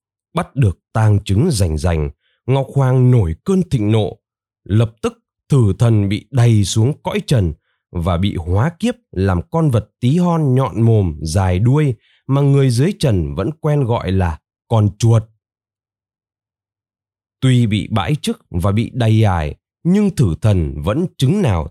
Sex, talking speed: male, 160 wpm